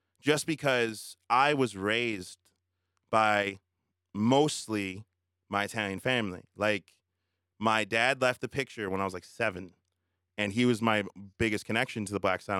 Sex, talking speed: male, 150 wpm